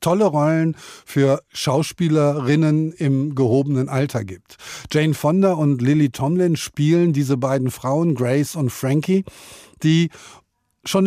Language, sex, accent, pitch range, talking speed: German, male, German, 135-165 Hz, 120 wpm